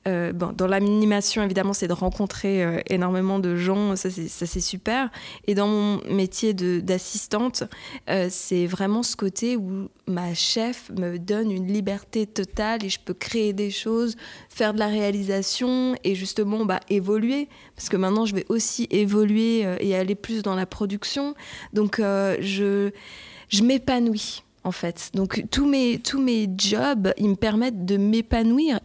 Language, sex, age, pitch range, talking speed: French, female, 20-39, 195-230 Hz, 170 wpm